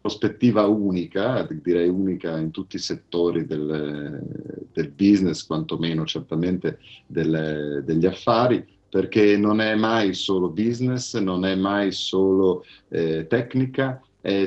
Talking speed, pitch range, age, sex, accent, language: 115 wpm, 85-100 Hz, 40-59, male, native, Italian